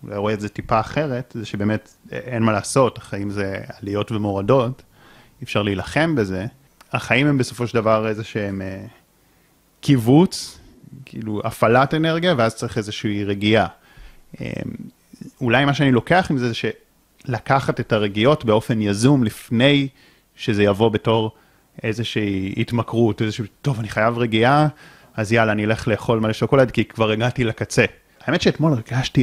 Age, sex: 30-49, male